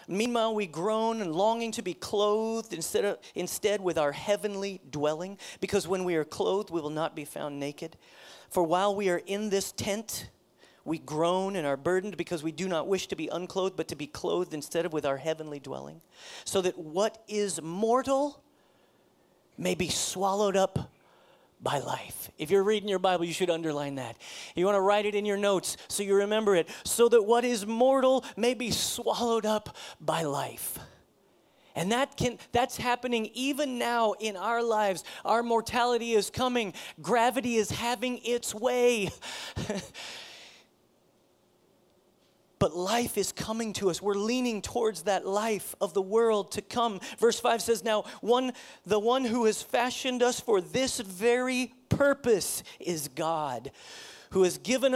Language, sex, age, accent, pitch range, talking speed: English, male, 40-59, American, 180-240 Hz, 170 wpm